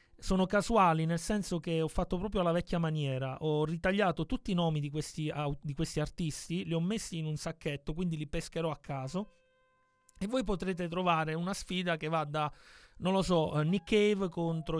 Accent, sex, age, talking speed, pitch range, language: native, male, 30-49, 190 wpm, 155-185 Hz, Italian